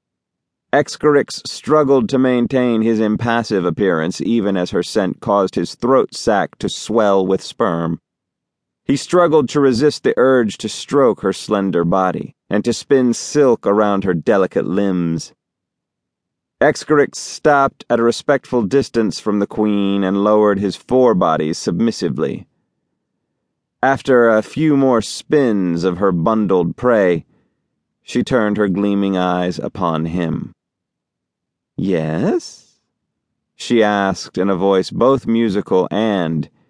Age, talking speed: 30-49, 125 wpm